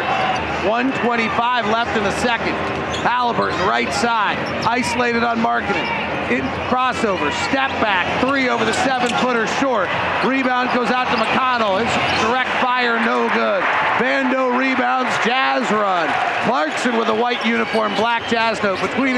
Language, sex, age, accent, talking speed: English, male, 40-59, American, 140 wpm